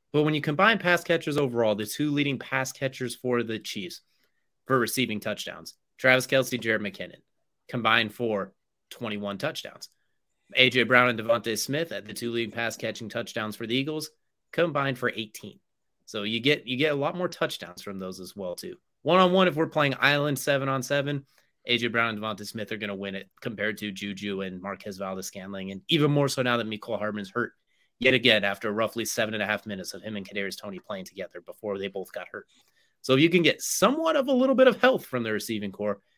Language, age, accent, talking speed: English, 30-49, American, 210 wpm